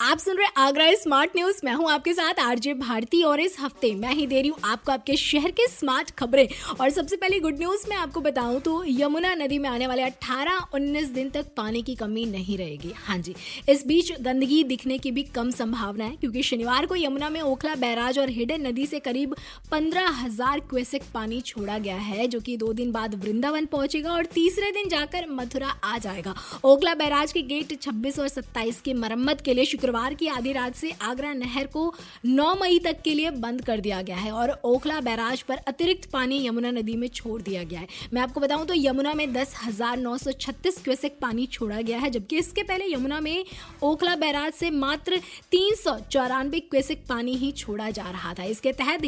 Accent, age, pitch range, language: native, 20-39, 245-310 Hz, Hindi